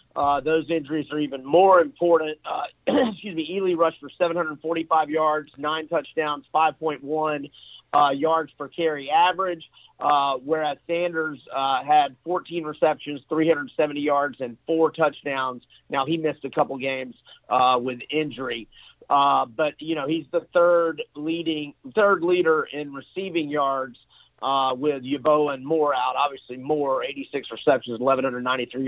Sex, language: male, English